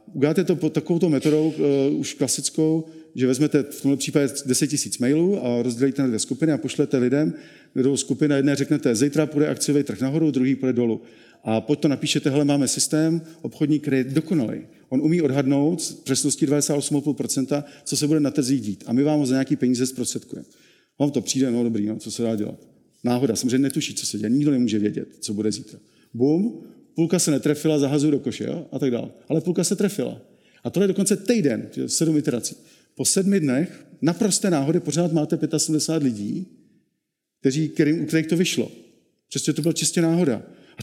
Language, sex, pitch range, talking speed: Czech, male, 120-155 Hz, 190 wpm